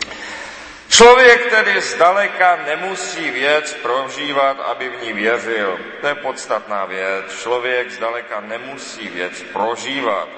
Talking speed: 110 wpm